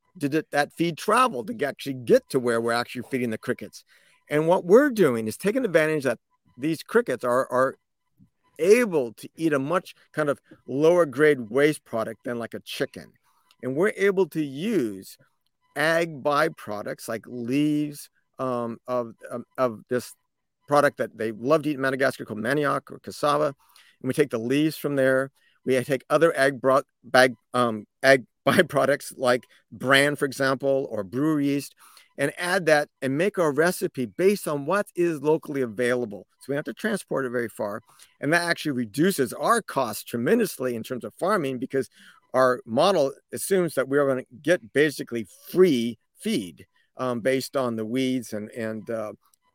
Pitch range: 125-165 Hz